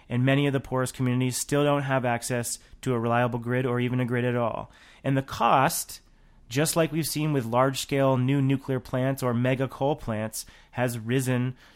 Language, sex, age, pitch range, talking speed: English, male, 30-49, 120-145 Hz, 195 wpm